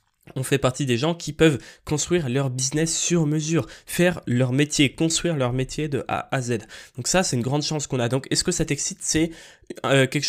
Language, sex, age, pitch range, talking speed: French, male, 20-39, 120-150 Hz, 215 wpm